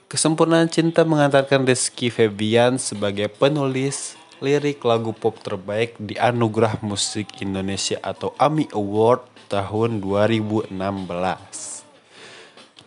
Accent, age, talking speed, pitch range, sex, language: native, 20-39, 95 wpm, 105-140 Hz, male, Indonesian